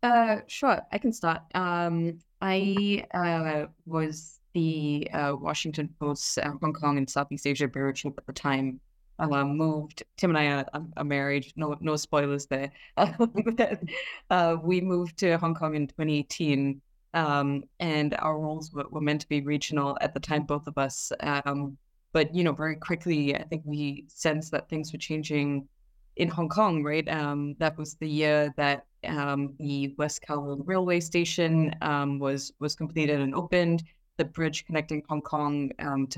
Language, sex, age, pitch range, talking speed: English, female, 20-39, 140-160 Hz, 170 wpm